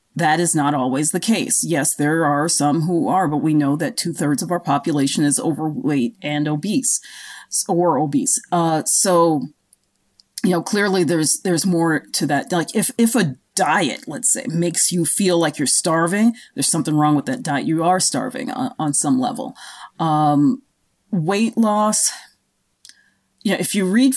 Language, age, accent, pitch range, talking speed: English, 30-49, American, 155-215 Hz, 175 wpm